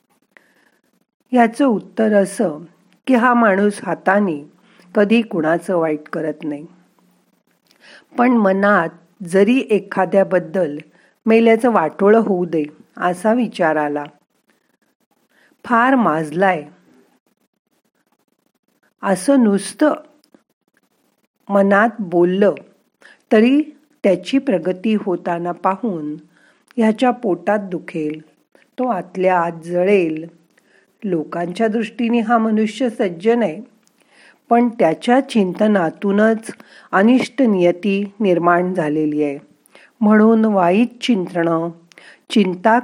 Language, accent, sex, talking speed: Marathi, native, female, 85 wpm